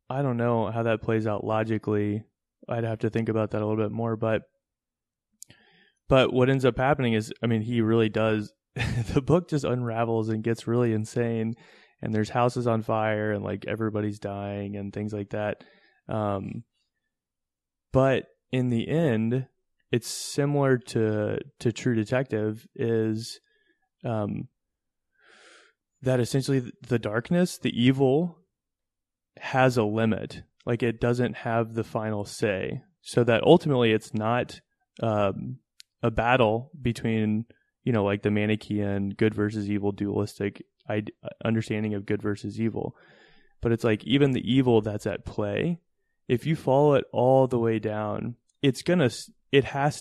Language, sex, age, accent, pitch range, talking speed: English, male, 20-39, American, 105-135 Hz, 150 wpm